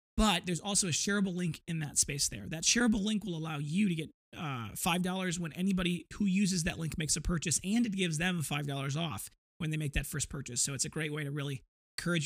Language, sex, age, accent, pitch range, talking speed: English, male, 30-49, American, 150-185 Hz, 240 wpm